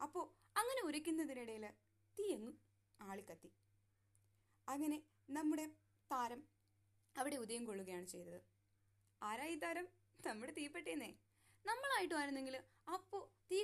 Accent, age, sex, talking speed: native, 20-39, female, 85 wpm